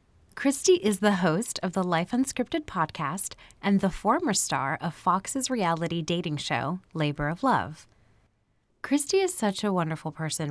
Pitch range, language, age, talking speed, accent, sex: 160-235 Hz, English, 20-39, 155 wpm, American, female